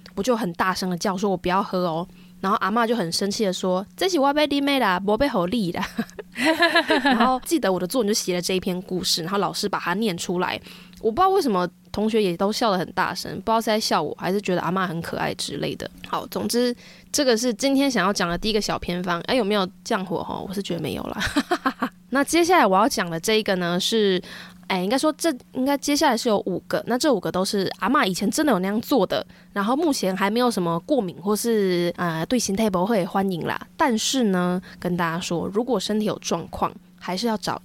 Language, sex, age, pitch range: Chinese, female, 20-39, 180-235 Hz